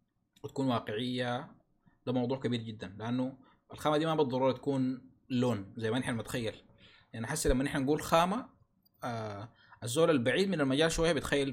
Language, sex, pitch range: Arabic, male, 110-150 Hz